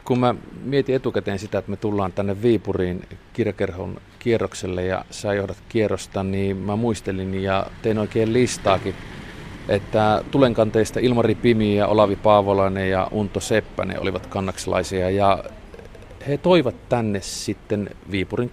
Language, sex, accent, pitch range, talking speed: Finnish, male, native, 95-120 Hz, 135 wpm